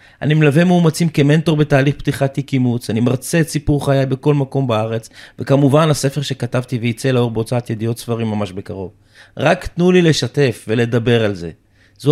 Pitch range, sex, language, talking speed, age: 115-150 Hz, male, Hebrew, 165 wpm, 30-49